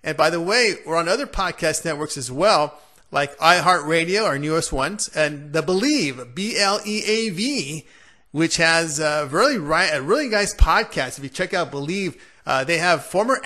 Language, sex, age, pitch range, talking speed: English, male, 30-49, 155-205 Hz, 160 wpm